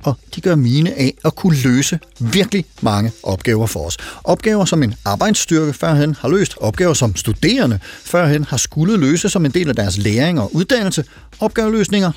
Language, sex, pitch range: Danish, male, 125-180 Hz